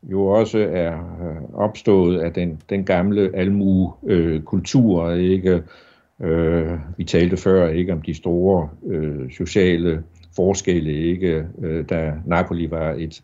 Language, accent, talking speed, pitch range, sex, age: Danish, native, 130 wpm, 85-100 Hz, male, 60-79